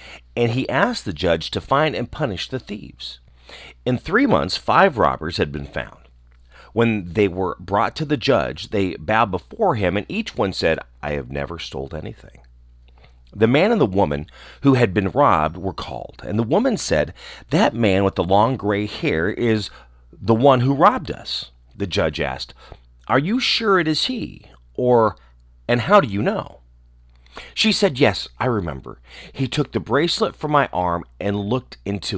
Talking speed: 180 wpm